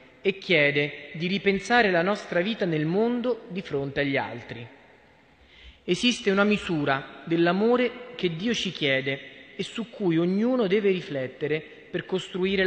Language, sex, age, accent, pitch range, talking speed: Italian, male, 30-49, native, 145-195 Hz, 135 wpm